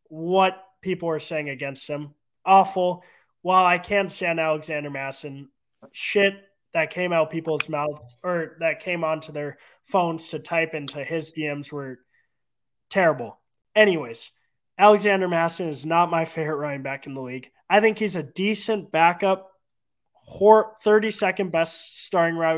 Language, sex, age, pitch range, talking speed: English, male, 20-39, 160-200 Hz, 145 wpm